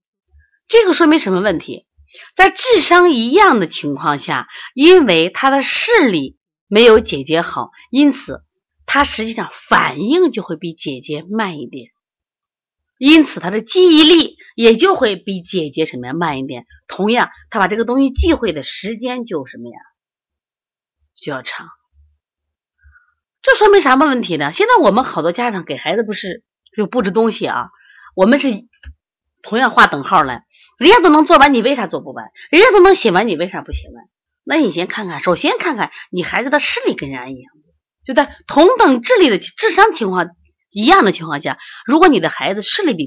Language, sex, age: Chinese, female, 30-49